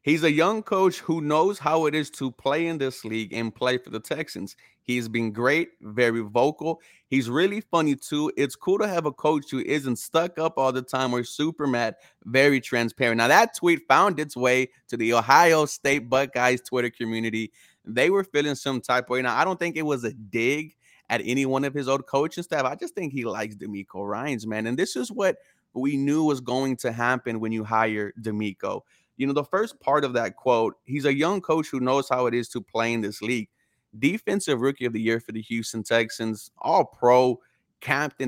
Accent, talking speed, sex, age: American, 220 wpm, male, 30-49